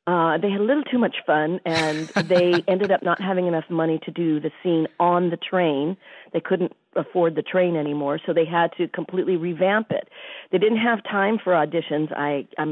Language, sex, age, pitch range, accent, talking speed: English, female, 50-69, 165-210 Hz, American, 205 wpm